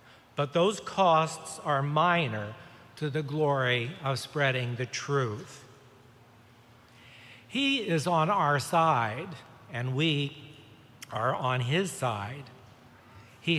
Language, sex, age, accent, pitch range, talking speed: English, male, 60-79, American, 125-165 Hz, 105 wpm